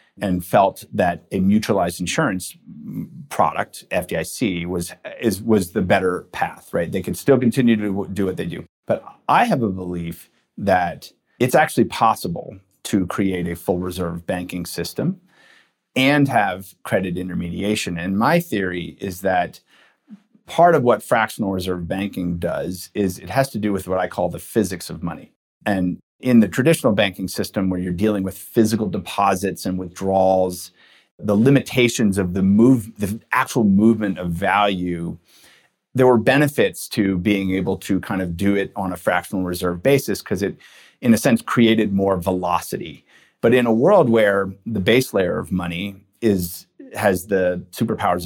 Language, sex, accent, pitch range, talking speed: English, male, American, 90-110 Hz, 165 wpm